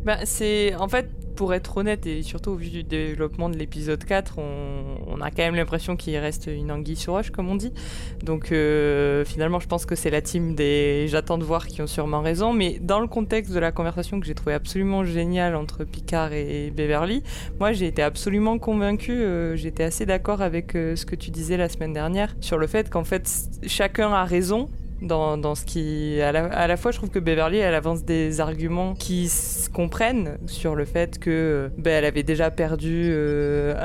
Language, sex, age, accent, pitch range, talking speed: French, female, 20-39, French, 155-195 Hz, 210 wpm